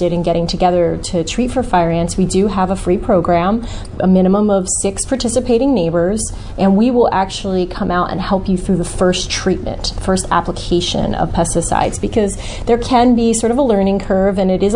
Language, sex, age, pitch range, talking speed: English, female, 30-49, 180-220 Hz, 200 wpm